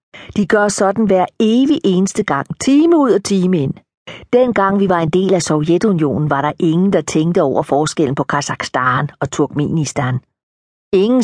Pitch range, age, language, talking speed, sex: 160-205 Hz, 50-69, Danish, 165 wpm, female